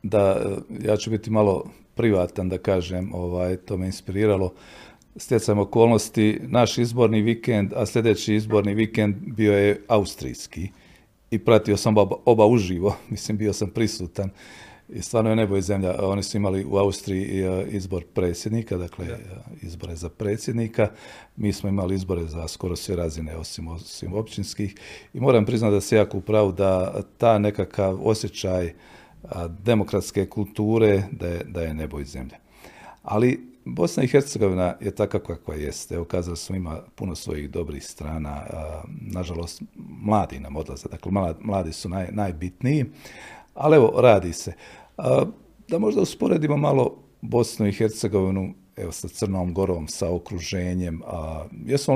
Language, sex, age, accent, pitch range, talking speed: Croatian, male, 40-59, native, 90-110 Hz, 150 wpm